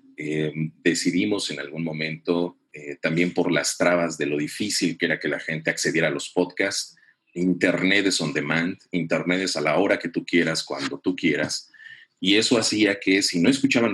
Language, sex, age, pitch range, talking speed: English, male, 40-59, 80-100 Hz, 190 wpm